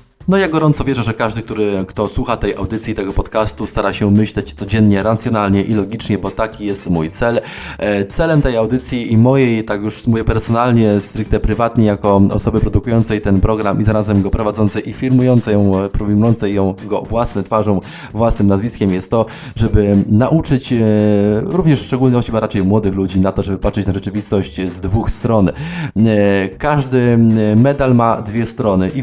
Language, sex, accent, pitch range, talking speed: Polish, male, native, 100-125 Hz, 165 wpm